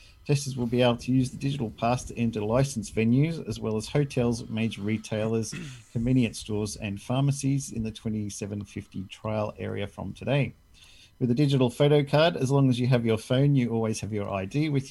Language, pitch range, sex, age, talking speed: English, 100-125 Hz, male, 40-59, 195 wpm